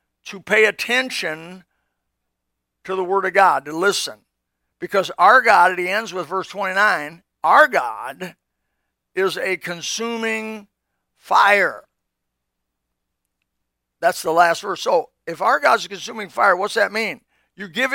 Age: 50-69